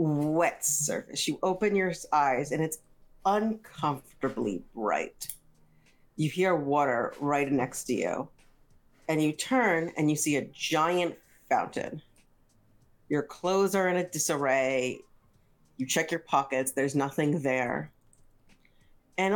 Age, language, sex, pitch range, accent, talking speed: 40-59, English, female, 140-195 Hz, American, 125 wpm